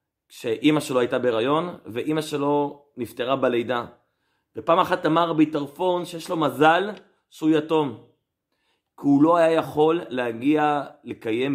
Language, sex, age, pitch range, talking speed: Hebrew, male, 30-49, 135-180 Hz, 125 wpm